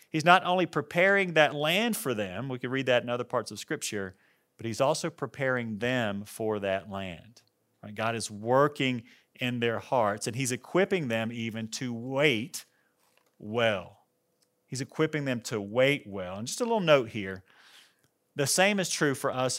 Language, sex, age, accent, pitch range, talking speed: English, male, 40-59, American, 115-155 Hz, 175 wpm